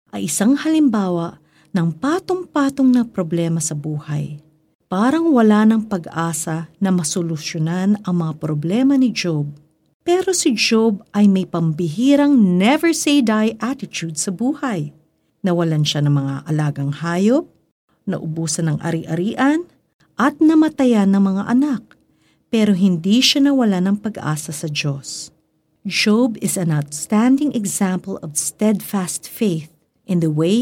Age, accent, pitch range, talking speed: 50-69, native, 160-220 Hz, 125 wpm